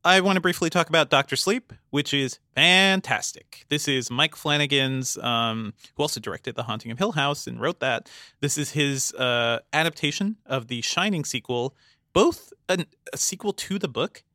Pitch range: 120-150 Hz